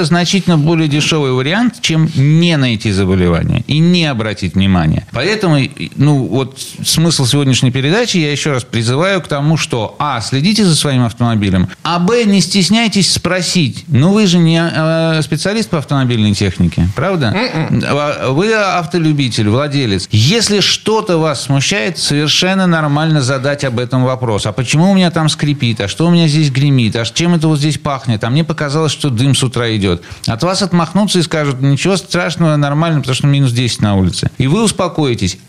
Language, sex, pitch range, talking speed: Russian, male, 120-170 Hz, 170 wpm